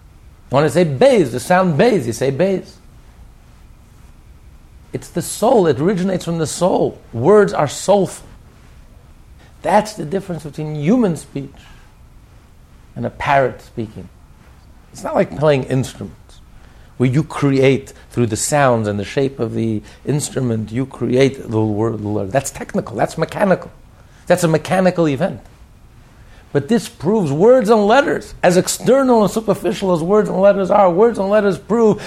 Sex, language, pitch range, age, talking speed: male, English, 105-175 Hz, 60-79, 150 wpm